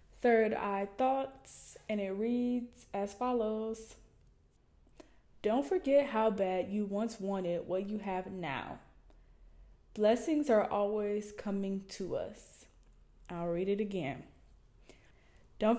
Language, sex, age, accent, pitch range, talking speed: English, female, 10-29, American, 185-225 Hz, 115 wpm